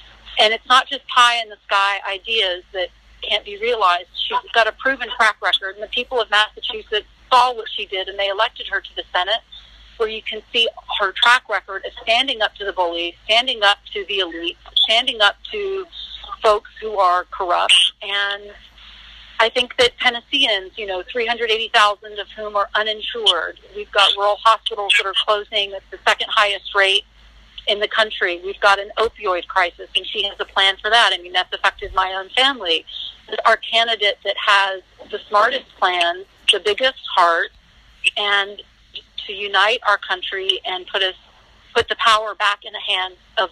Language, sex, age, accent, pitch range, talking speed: English, female, 40-59, American, 195-250 Hz, 175 wpm